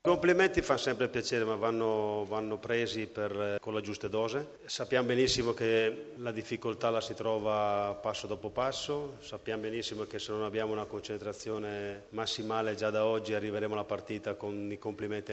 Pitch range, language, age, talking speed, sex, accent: 105-130 Hz, Italian, 40-59, 165 wpm, male, native